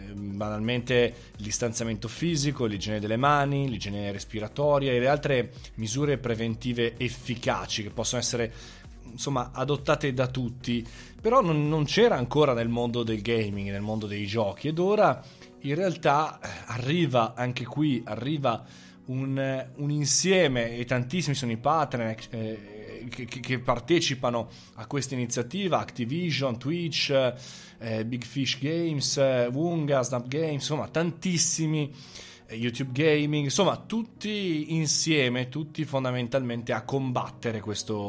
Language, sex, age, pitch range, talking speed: Italian, male, 20-39, 115-145 Hz, 125 wpm